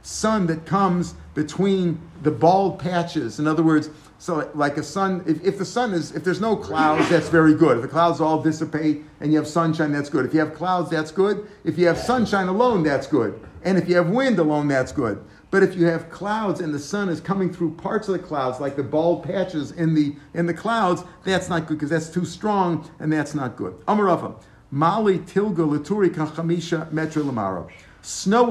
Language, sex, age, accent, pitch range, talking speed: English, male, 50-69, American, 150-175 Hz, 215 wpm